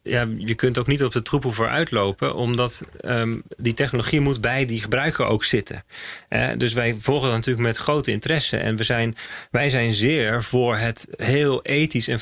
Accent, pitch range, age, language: Dutch, 115-135 Hz, 40-59, Dutch